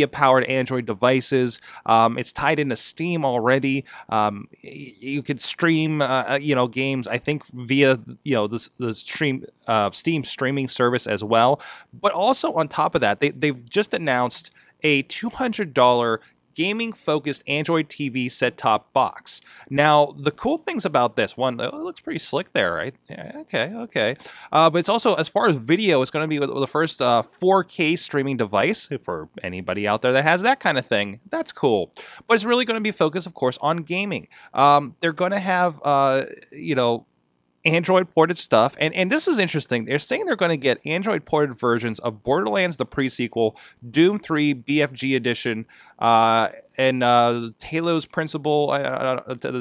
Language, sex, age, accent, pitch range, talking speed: English, male, 20-39, American, 125-165 Hz, 175 wpm